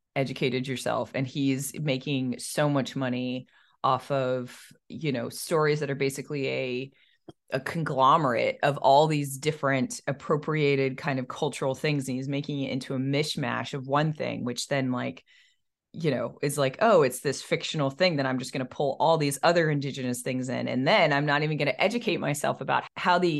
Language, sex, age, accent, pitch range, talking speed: English, female, 30-49, American, 130-165 Hz, 185 wpm